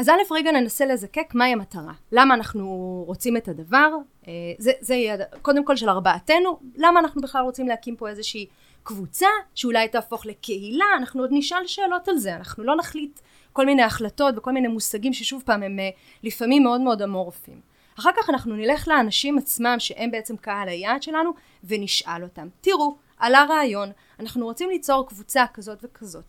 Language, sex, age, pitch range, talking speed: Hebrew, female, 30-49, 210-285 Hz, 165 wpm